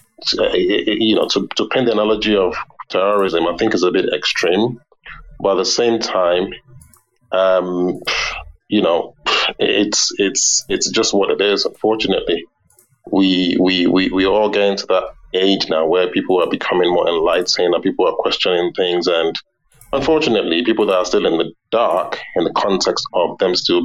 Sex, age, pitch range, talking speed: male, 30-49, 95-120 Hz, 170 wpm